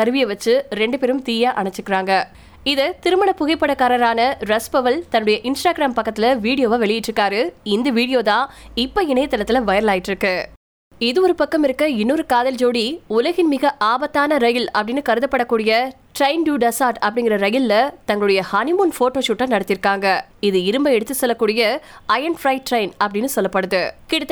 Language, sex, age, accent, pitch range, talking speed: Tamil, female, 20-39, native, 215-275 Hz, 45 wpm